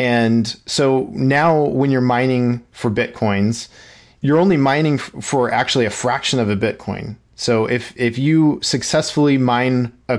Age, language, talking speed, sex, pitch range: 30-49, English, 155 wpm, male, 110-140 Hz